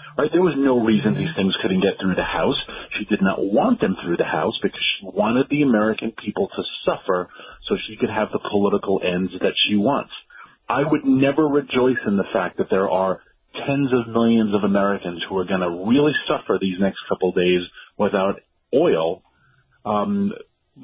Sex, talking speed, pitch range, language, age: male, 185 wpm, 95-135 Hz, English, 40-59